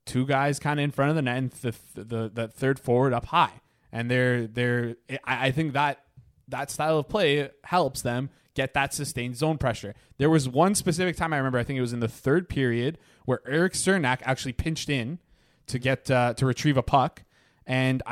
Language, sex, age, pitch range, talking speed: English, male, 20-39, 130-160 Hz, 210 wpm